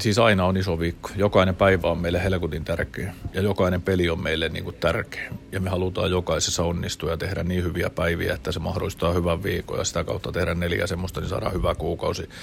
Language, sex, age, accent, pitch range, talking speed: Finnish, male, 30-49, native, 85-100 Hz, 210 wpm